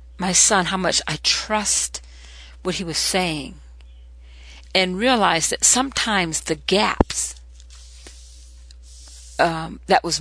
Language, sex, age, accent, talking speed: English, female, 50-69, American, 110 wpm